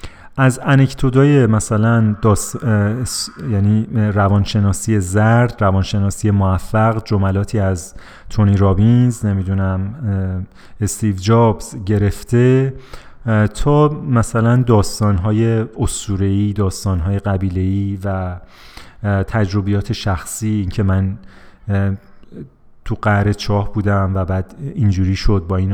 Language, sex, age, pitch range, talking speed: Persian, male, 30-49, 95-120 Hz, 105 wpm